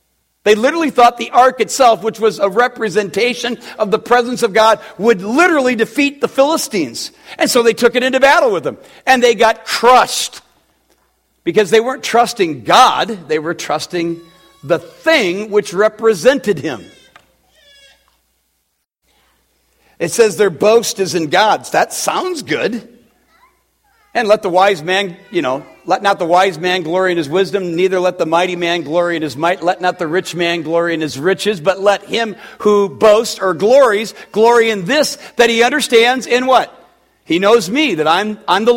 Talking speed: 175 wpm